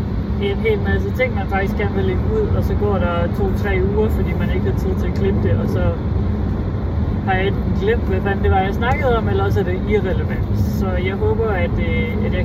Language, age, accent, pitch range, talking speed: Danish, 30-49, native, 95-105 Hz, 225 wpm